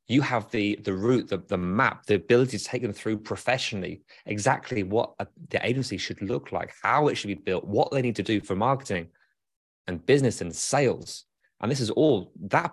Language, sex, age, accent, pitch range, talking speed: English, male, 20-39, British, 100-125 Hz, 205 wpm